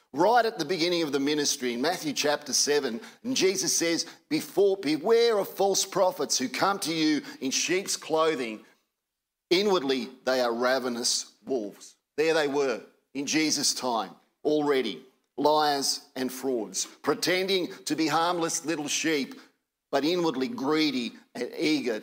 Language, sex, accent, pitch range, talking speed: English, male, Australian, 140-185 Hz, 140 wpm